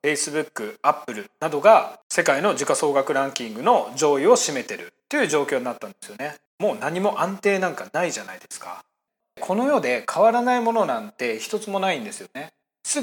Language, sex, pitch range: Japanese, male, 145-235 Hz